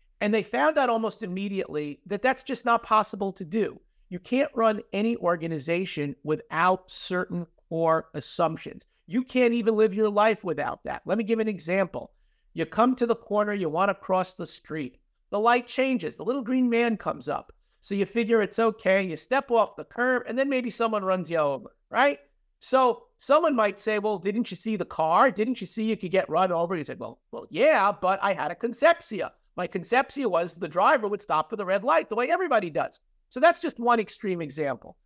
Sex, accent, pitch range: male, American, 175-235 Hz